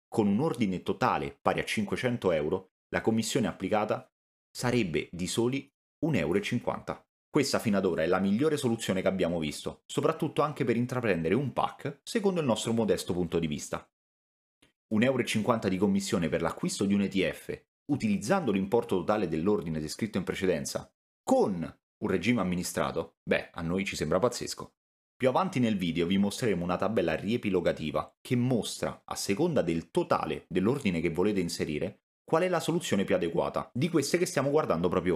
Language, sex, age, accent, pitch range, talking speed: Italian, male, 30-49, native, 90-135 Hz, 165 wpm